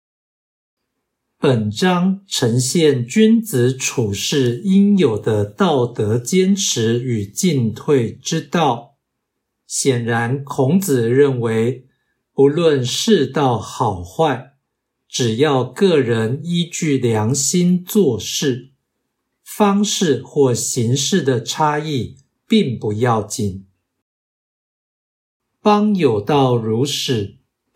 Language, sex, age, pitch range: Chinese, male, 60-79, 115-160 Hz